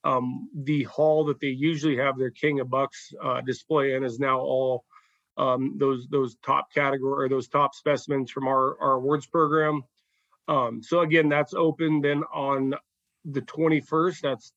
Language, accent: English, American